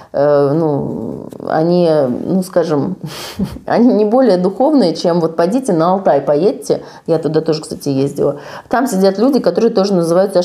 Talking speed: 150 wpm